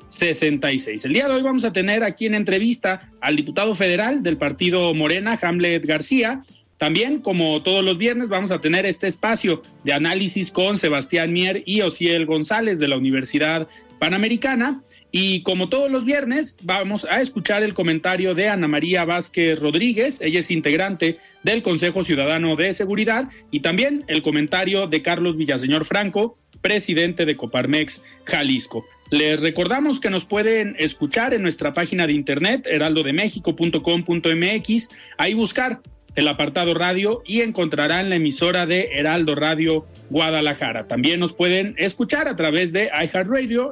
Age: 40-59